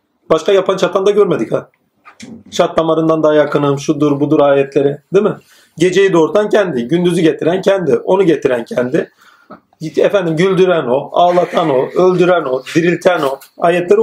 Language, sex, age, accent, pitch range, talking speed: Turkish, male, 40-59, native, 160-210 Hz, 145 wpm